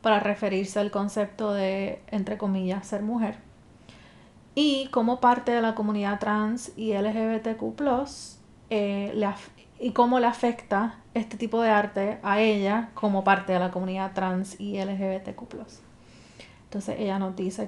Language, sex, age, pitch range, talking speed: English, female, 30-49, 200-235 Hz, 145 wpm